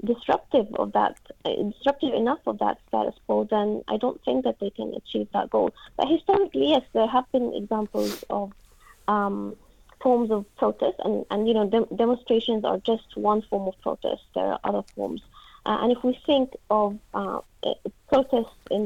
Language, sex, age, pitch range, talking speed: English, female, 20-39, 205-260 Hz, 180 wpm